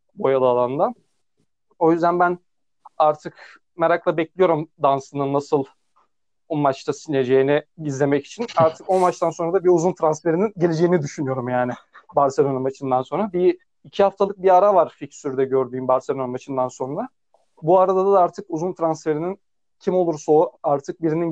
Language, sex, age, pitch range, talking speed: Turkish, male, 40-59, 145-180 Hz, 145 wpm